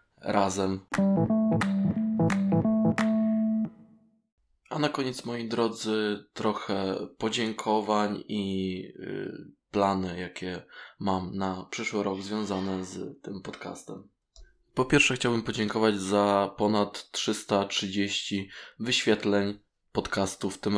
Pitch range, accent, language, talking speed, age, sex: 100-110 Hz, native, Polish, 90 wpm, 20-39, male